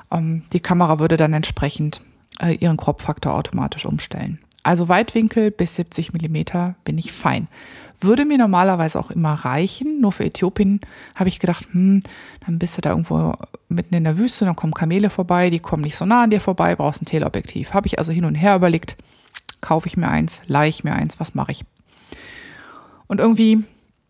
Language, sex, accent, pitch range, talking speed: English, female, German, 160-200 Hz, 185 wpm